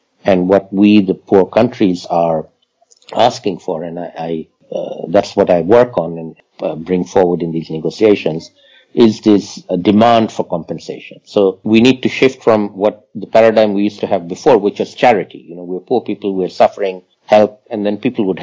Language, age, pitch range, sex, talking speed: English, 50-69, 90-110 Hz, male, 195 wpm